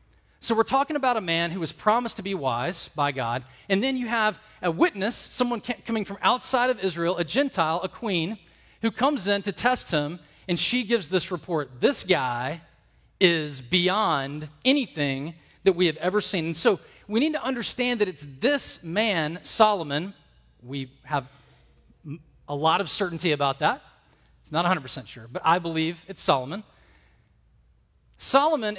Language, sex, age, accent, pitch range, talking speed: English, male, 40-59, American, 140-210 Hz, 165 wpm